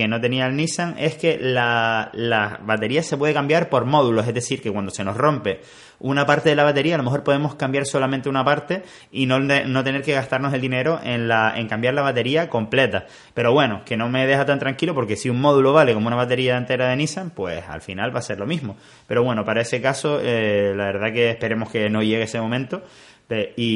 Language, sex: Spanish, male